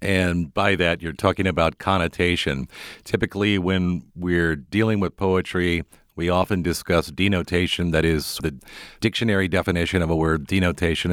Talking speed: 140 wpm